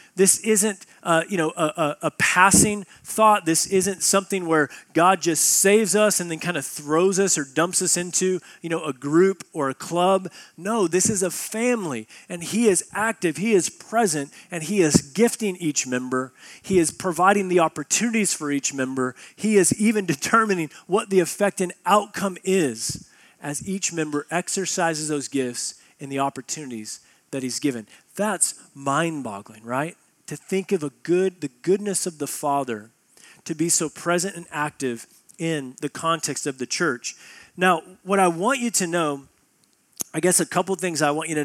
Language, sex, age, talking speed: English, male, 30-49, 170 wpm